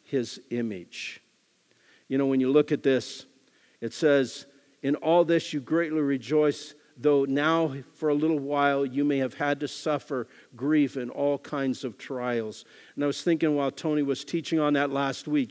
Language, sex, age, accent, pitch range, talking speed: English, male, 50-69, American, 130-155 Hz, 180 wpm